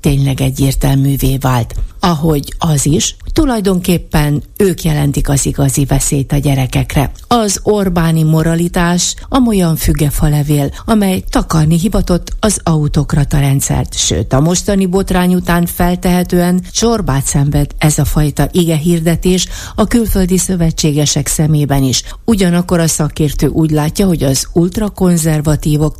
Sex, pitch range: female, 140-180 Hz